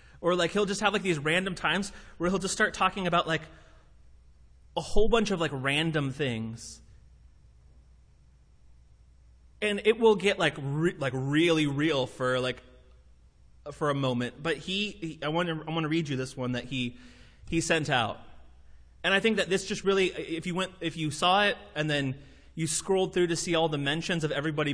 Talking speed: 195 wpm